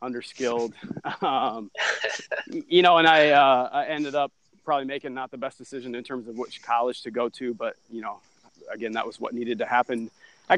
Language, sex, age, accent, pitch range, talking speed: English, male, 30-49, American, 120-140 Hz, 200 wpm